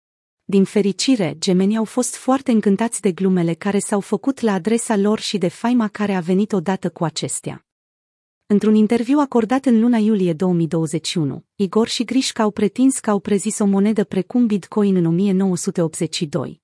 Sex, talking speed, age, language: female, 160 wpm, 30-49, Romanian